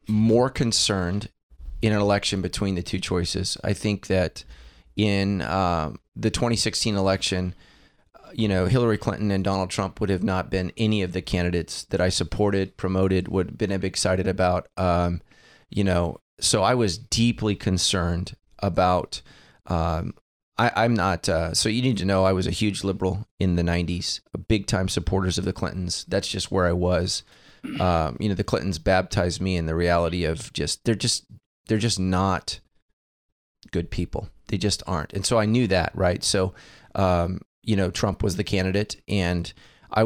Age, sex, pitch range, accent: 30-49, male, 90-105 Hz, American